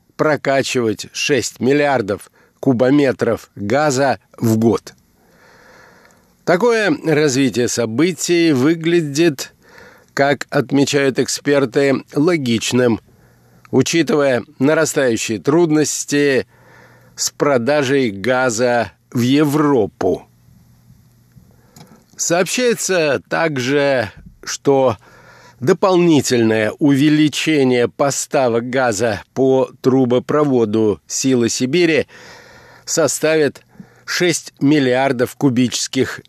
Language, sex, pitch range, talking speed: Russian, male, 120-150 Hz, 65 wpm